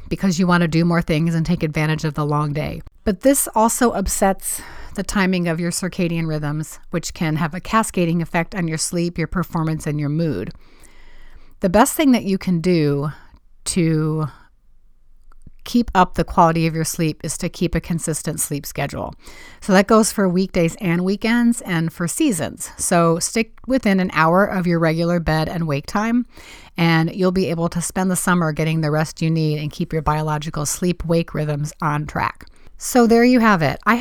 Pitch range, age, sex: 160-195 Hz, 30-49, female